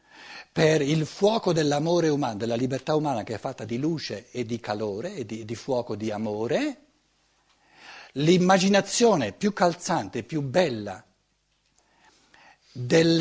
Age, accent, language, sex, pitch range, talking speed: 60-79, native, Italian, male, 115-165 Hz, 125 wpm